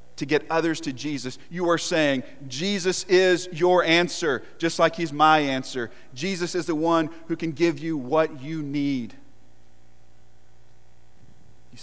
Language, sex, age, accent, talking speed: English, male, 40-59, American, 145 wpm